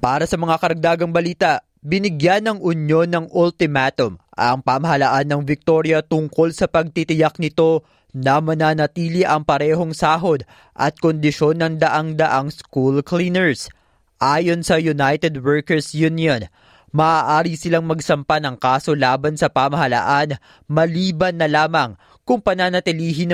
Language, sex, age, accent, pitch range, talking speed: Filipino, male, 20-39, native, 145-170 Hz, 120 wpm